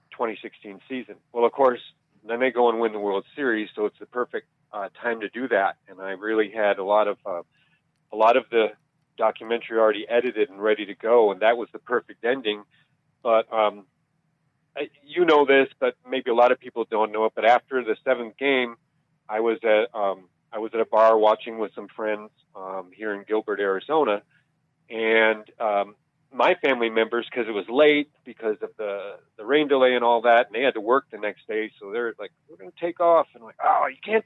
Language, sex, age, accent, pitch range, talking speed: English, male, 40-59, American, 110-150 Hz, 215 wpm